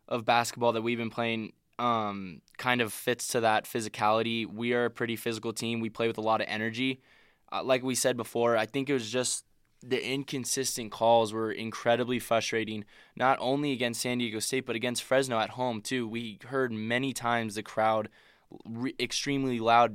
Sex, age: male, 20-39